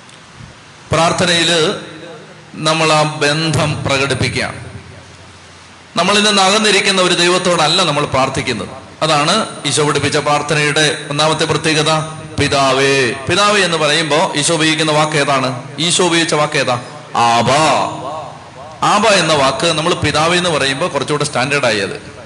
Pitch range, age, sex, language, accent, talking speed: 135-165 Hz, 30-49, male, Malayalam, native, 110 wpm